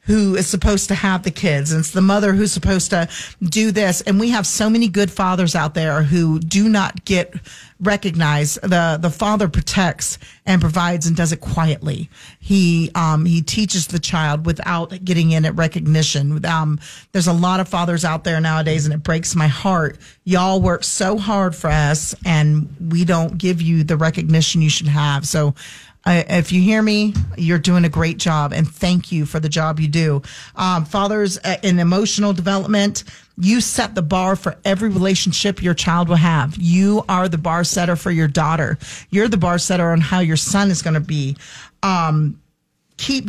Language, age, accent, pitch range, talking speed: English, 40-59, American, 160-190 Hz, 190 wpm